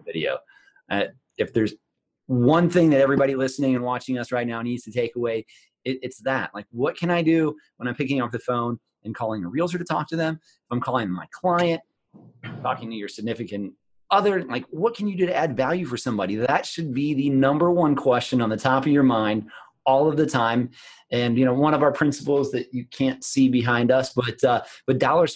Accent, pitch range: American, 120-150 Hz